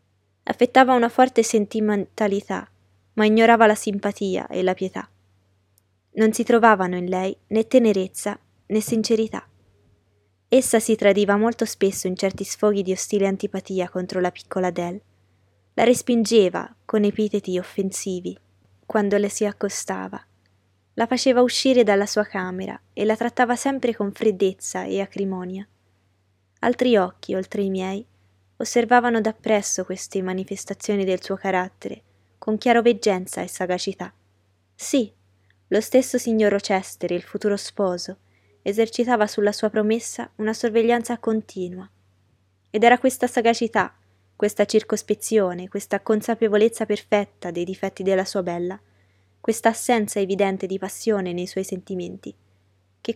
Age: 20-39